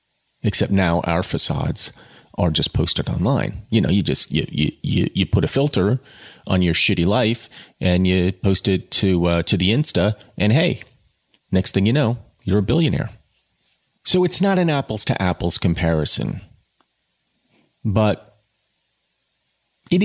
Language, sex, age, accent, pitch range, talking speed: English, male, 30-49, American, 90-125 Hz, 150 wpm